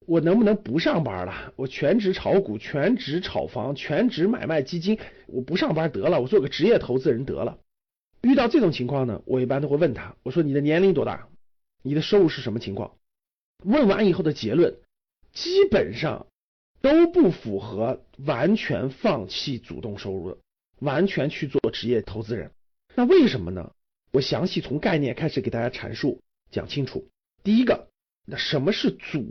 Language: Chinese